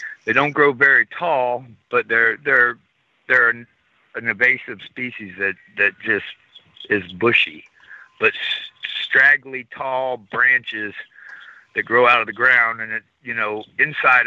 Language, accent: English, American